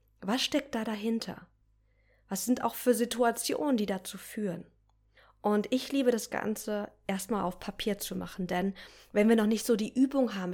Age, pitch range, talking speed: 20-39, 180-225 Hz, 175 wpm